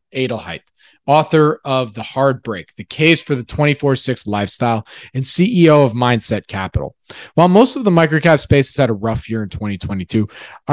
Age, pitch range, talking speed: 20-39, 120-165 Hz, 175 wpm